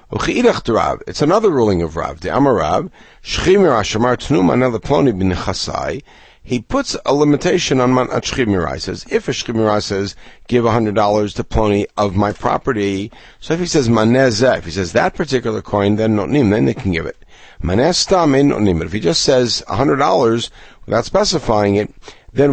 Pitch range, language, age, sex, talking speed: 95-130 Hz, English, 60-79, male, 150 wpm